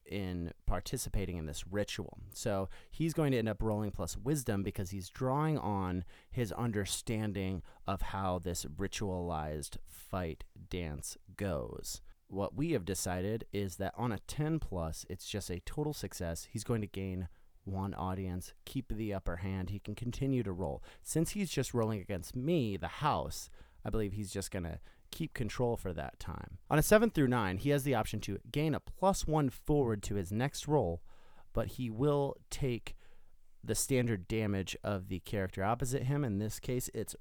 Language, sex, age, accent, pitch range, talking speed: English, male, 30-49, American, 90-120 Hz, 180 wpm